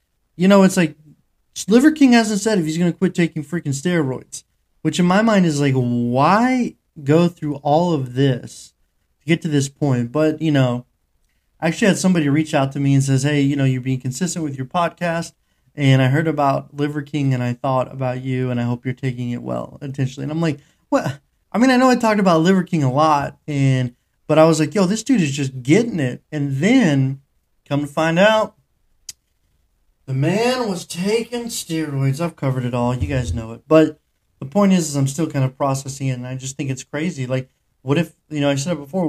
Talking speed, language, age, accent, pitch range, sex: 225 wpm, English, 20-39, American, 135-170 Hz, male